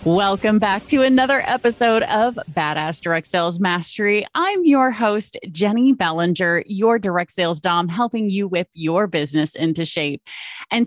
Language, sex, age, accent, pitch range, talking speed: English, female, 30-49, American, 175-235 Hz, 150 wpm